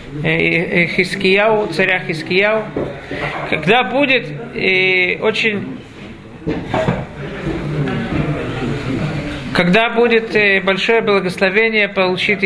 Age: 50-69